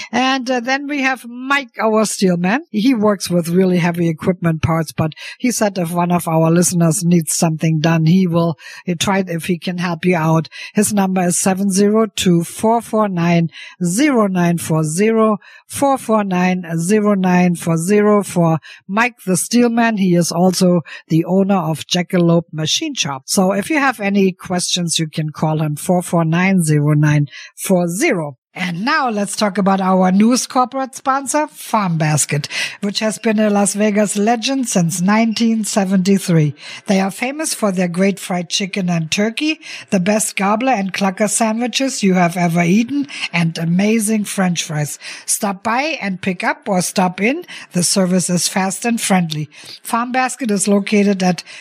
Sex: female